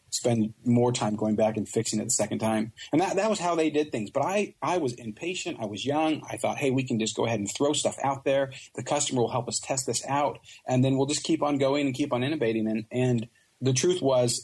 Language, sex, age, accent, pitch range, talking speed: English, male, 40-59, American, 110-130 Hz, 265 wpm